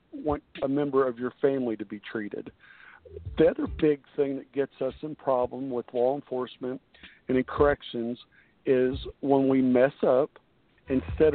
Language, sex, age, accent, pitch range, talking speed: English, male, 50-69, American, 125-145 Hz, 160 wpm